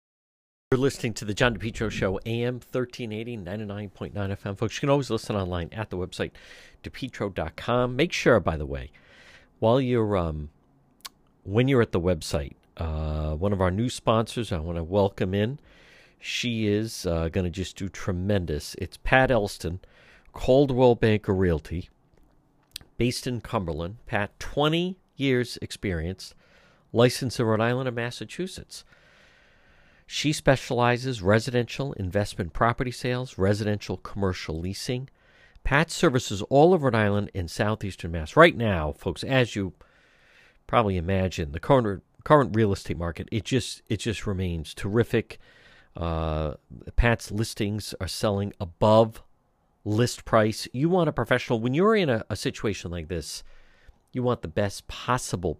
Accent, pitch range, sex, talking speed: American, 90-120 Hz, male, 140 wpm